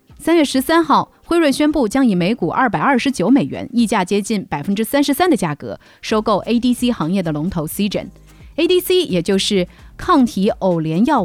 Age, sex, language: 30-49, female, Chinese